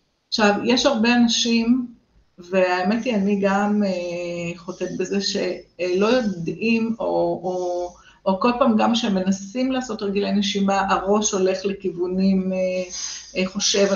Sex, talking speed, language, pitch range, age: female, 115 wpm, Hebrew, 180-205 Hz, 50-69